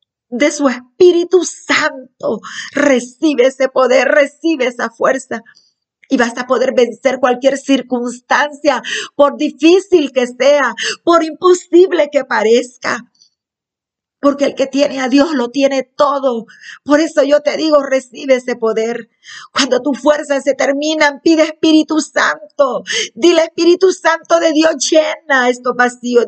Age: 40-59